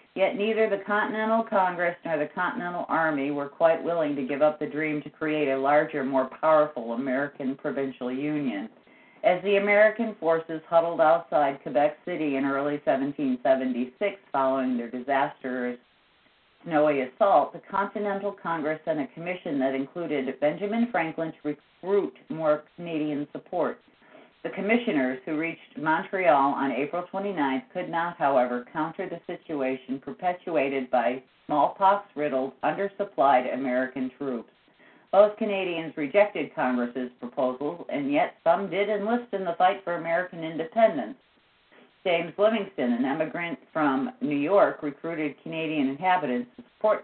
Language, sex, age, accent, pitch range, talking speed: English, female, 50-69, American, 135-190 Hz, 135 wpm